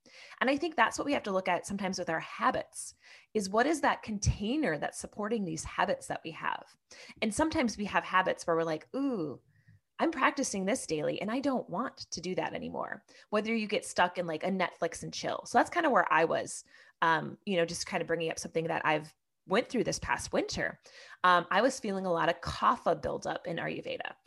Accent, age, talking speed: American, 20-39, 225 wpm